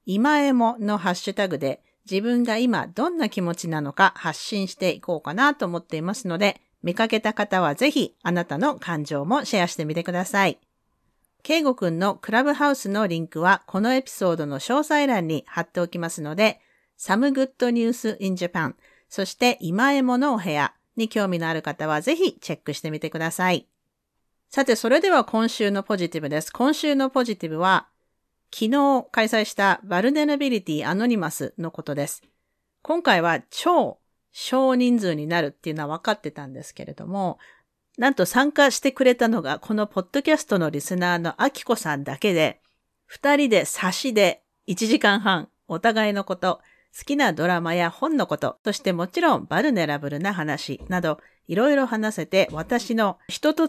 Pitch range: 170-250 Hz